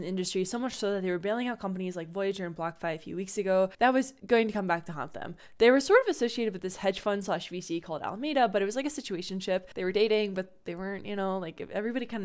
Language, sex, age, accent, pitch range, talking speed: English, female, 10-29, American, 185-240 Hz, 285 wpm